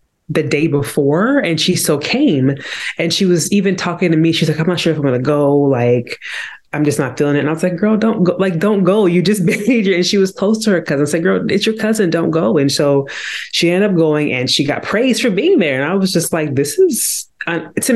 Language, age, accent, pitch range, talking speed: English, 20-39, American, 140-175 Hz, 265 wpm